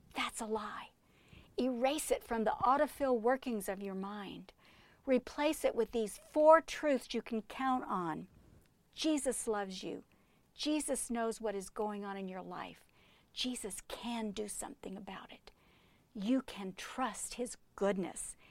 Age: 50-69